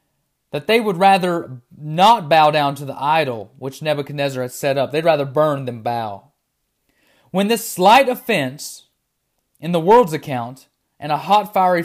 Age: 30-49